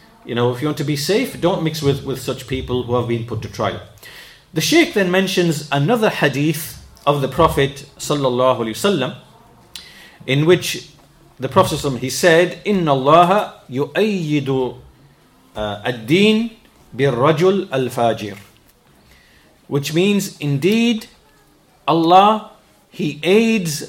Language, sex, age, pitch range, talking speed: English, male, 40-59, 135-185 Hz, 120 wpm